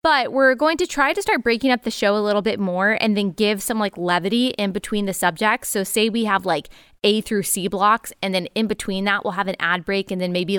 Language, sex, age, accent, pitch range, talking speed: English, female, 20-39, American, 195-235 Hz, 265 wpm